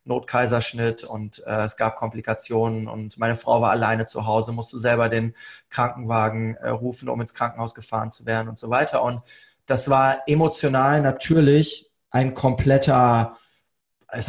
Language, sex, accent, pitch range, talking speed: German, male, German, 115-145 Hz, 150 wpm